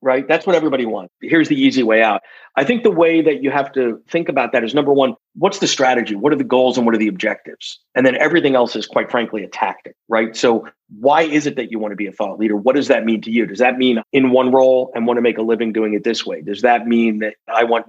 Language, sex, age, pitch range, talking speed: English, male, 40-59, 115-140 Hz, 290 wpm